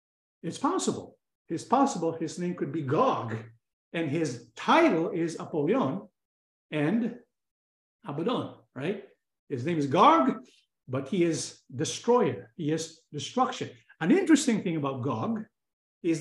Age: 50-69